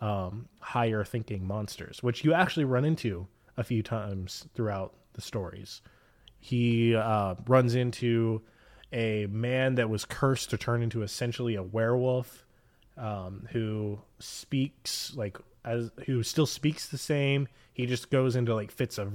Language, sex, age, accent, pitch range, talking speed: English, male, 20-39, American, 105-130 Hz, 145 wpm